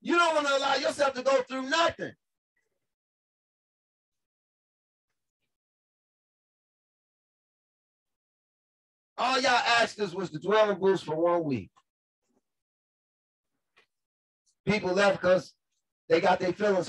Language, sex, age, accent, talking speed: English, male, 40-59, American, 100 wpm